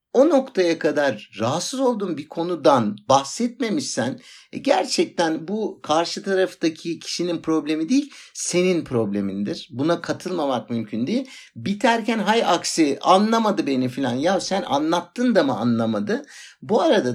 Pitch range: 130-200 Hz